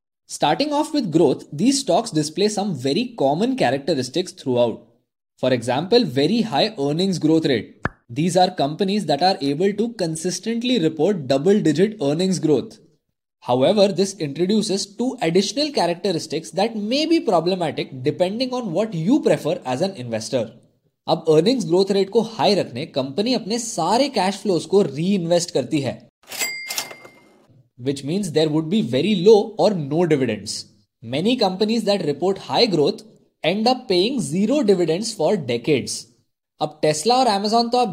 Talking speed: 150 wpm